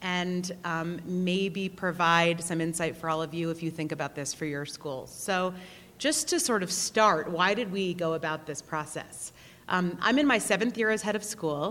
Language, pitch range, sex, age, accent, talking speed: English, 170-225 Hz, female, 30-49, American, 210 wpm